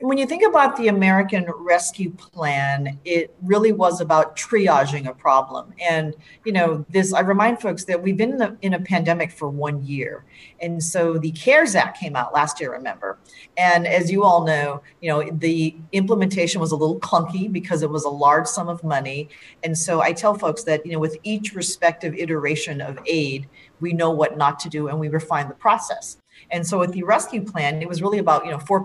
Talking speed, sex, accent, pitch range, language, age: 210 wpm, female, American, 155-185 Hz, English, 40-59